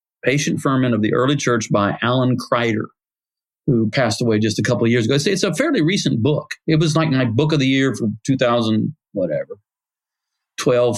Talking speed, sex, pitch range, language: 190 wpm, male, 125-165 Hz, English